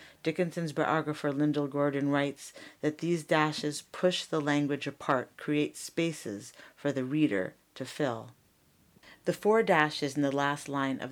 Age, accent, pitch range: 50-69, American, 135-160 Hz